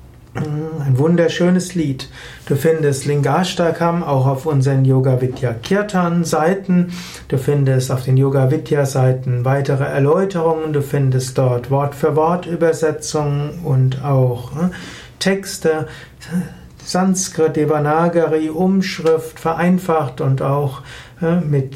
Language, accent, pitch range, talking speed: German, German, 135-170 Hz, 85 wpm